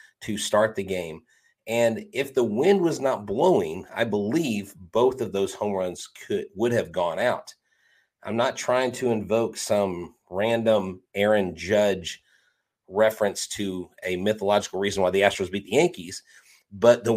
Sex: male